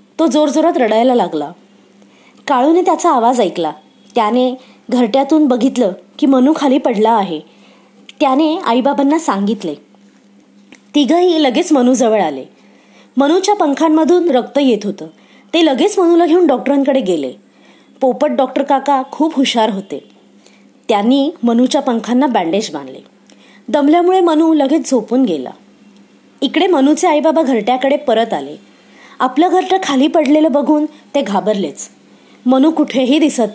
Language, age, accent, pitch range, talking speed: Marathi, 20-39, native, 225-300 Hz, 120 wpm